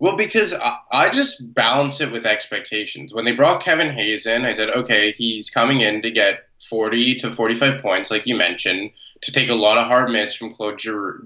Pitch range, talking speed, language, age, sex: 115-145 Hz, 215 wpm, English, 20-39, male